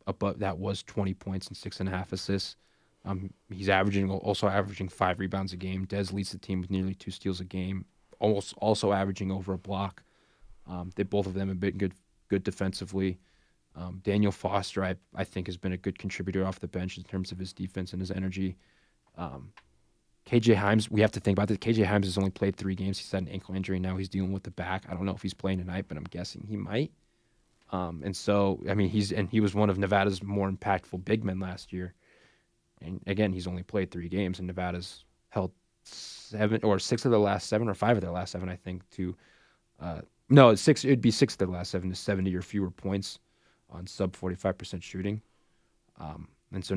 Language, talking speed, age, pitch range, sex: English, 225 wpm, 20-39, 95-100 Hz, male